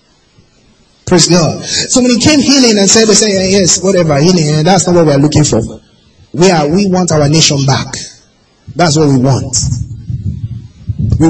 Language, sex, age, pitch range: English, male, 30-49, 120-170 Hz